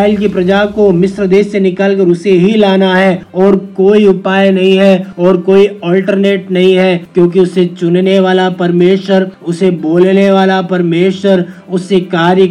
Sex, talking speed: male, 155 wpm